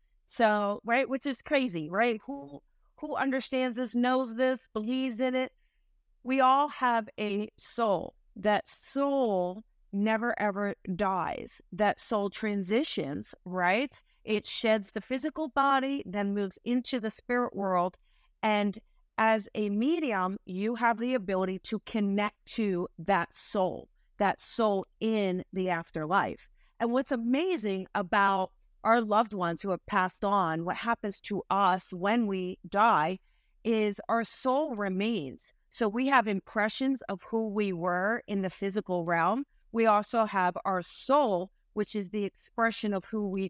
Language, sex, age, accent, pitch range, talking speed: English, female, 40-59, American, 190-240 Hz, 145 wpm